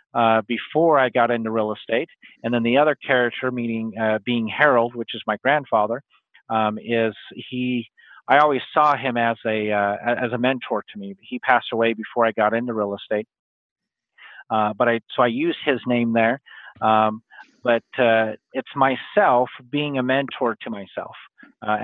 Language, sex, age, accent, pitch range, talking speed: English, male, 40-59, American, 115-135 Hz, 180 wpm